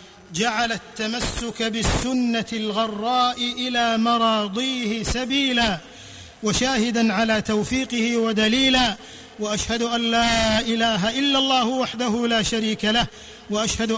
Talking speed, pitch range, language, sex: 95 wpm, 225-270 Hz, Arabic, male